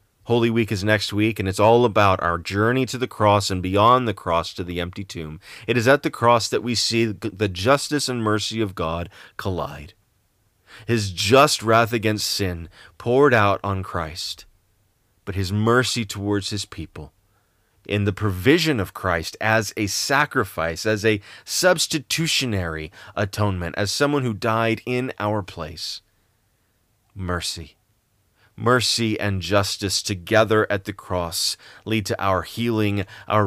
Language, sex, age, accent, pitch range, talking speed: English, male, 30-49, American, 95-125 Hz, 150 wpm